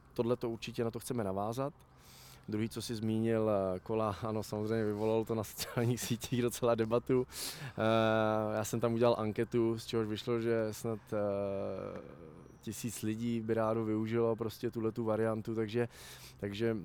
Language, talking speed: Czech, 145 wpm